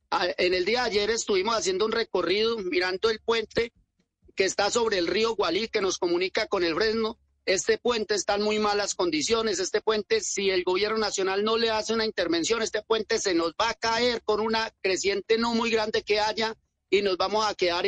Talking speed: 210 wpm